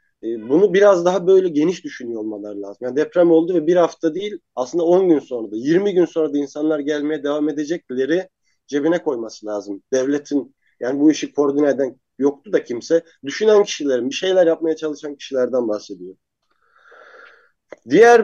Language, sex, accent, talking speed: Turkish, male, native, 165 wpm